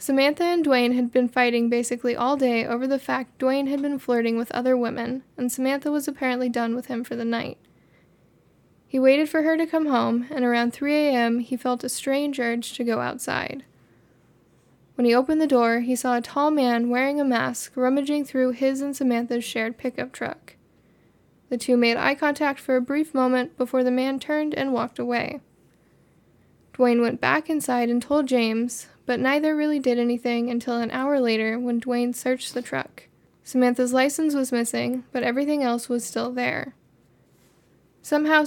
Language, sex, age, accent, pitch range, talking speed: English, female, 10-29, American, 240-275 Hz, 180 wpm